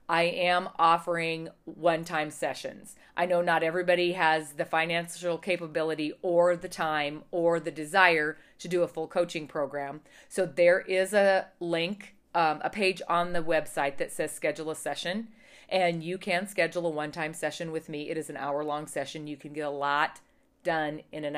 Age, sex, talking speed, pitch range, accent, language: 40-59, female, 175 wpm, 150-180 Hz, American, English